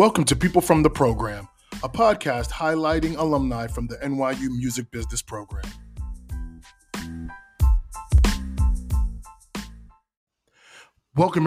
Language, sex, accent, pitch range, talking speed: English, male, American, 115-155 Hz, 90 wpm